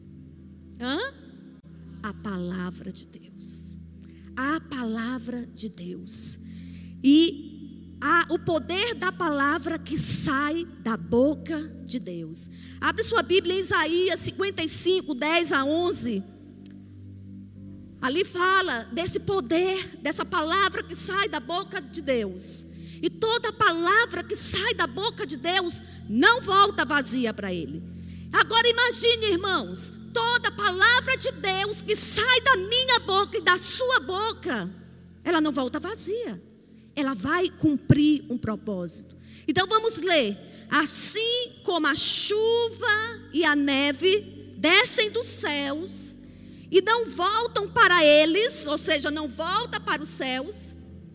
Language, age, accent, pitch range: Portuguese, 20-39, Brazilian, 245-390 Hz